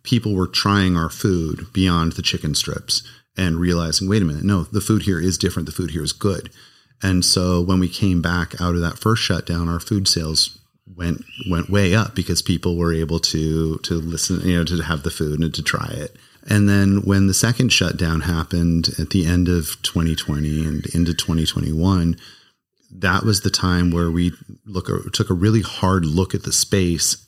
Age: 30-49